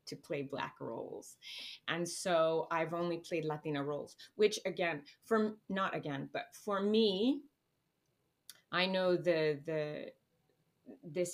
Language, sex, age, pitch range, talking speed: English, female, 20-39, 145-175 Hz, 125 wpm